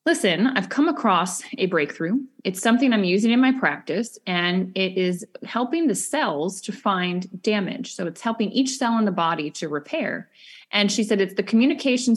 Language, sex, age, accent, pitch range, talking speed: English, female, 20-39, American, 180-230 Hz, 185 wpm